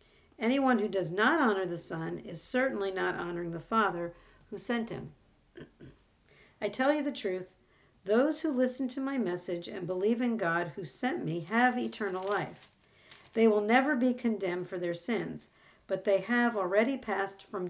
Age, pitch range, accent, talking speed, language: 50-69, 185-240 Hz, American, 175 wpm, English